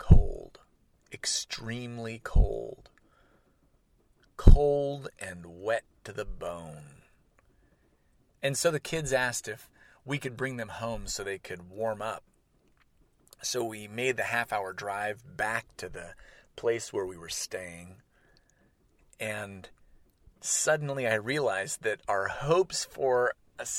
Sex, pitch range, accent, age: male, 105-145 Hz, American, 30-49